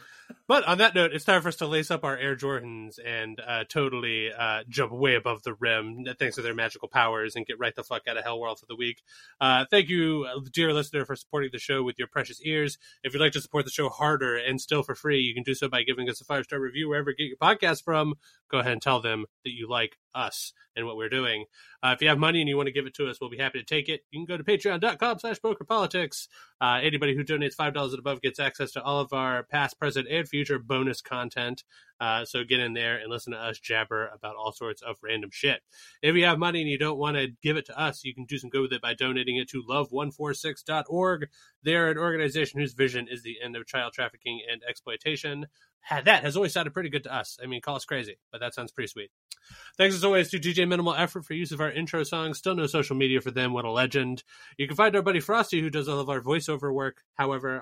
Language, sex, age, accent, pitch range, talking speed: English, male, 20-39, American, 125-155 Hz, 255 wpm